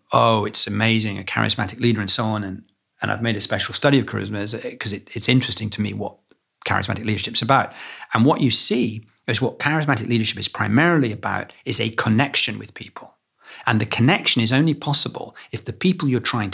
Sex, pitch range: male, 110-150 Hz